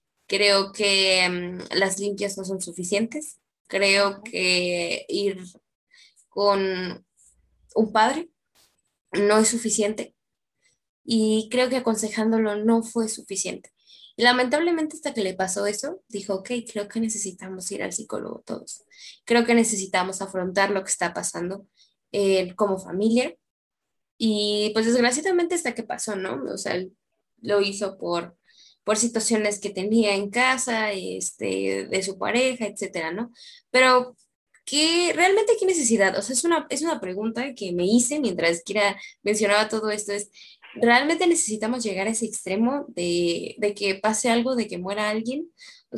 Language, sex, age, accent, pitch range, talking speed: Spanish, female, 10-29, Mexican, 195-240 Hz, 145 wpm